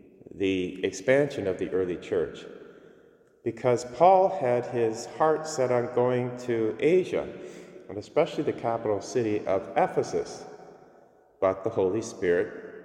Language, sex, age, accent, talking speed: English, male, 40-59, American, 125 wpm